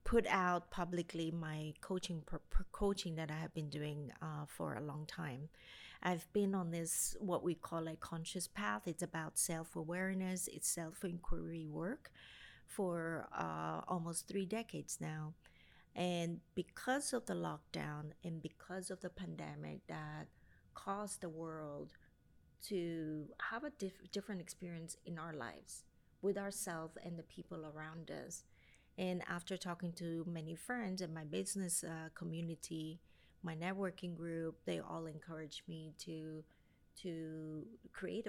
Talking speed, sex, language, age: 145 wpm, female, English, 30-49